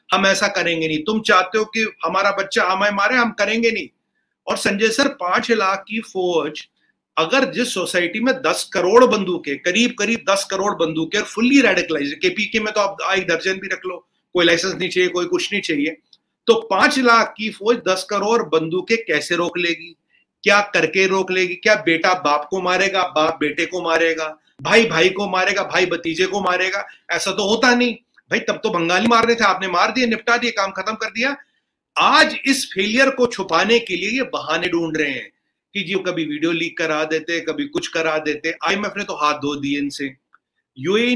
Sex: male